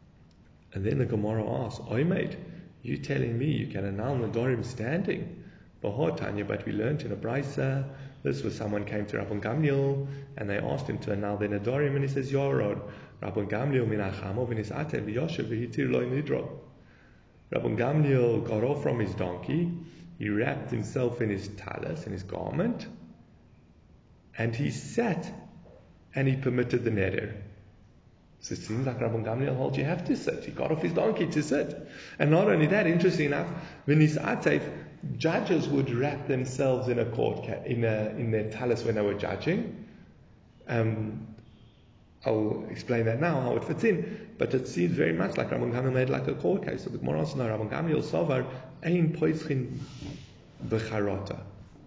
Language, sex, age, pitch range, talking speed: English, male, 30-49, 105-140 Hz, 155 wpm